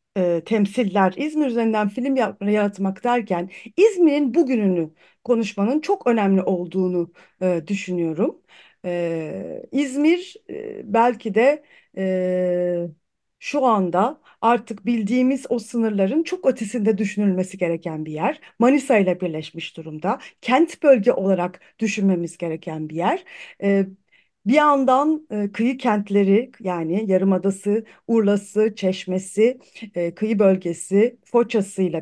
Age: 40-59